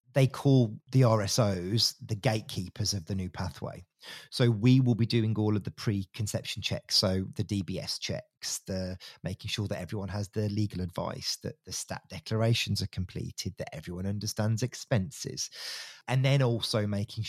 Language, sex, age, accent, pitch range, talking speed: English, male, 30-49, British, 100-125 Hz, 165 wpm